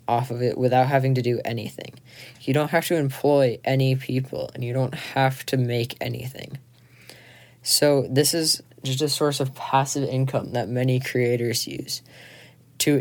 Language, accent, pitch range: English, American, 120-140 Hz